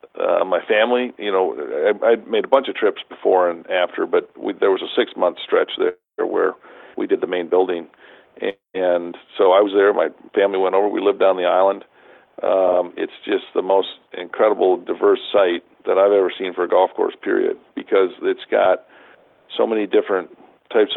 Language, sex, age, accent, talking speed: English, male, 50-69, American, 190 wpm